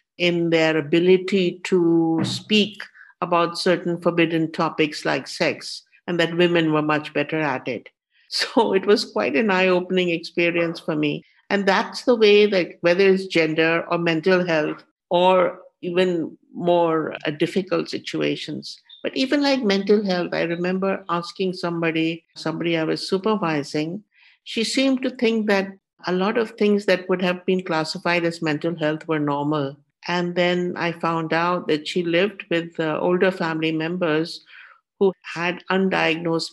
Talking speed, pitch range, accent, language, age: 155 wpm, 165-190 Hz, Indian, English, 60-79